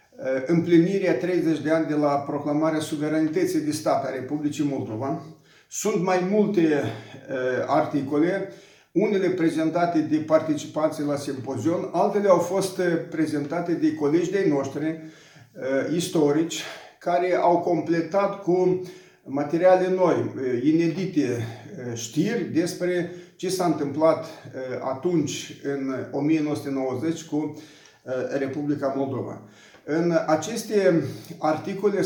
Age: 50-69